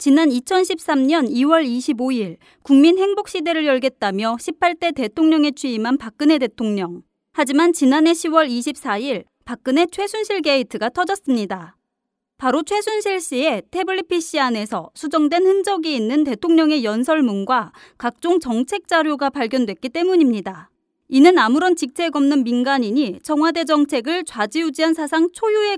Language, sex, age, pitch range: Korean, female, 30-49, 245-330 Hz